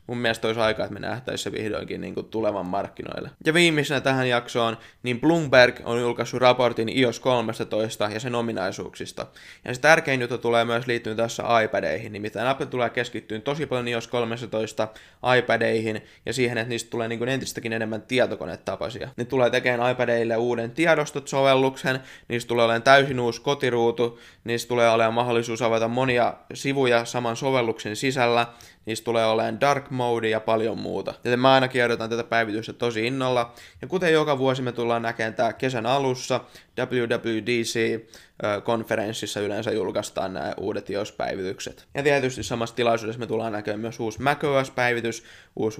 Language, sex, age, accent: Finnish, male, 20-39, native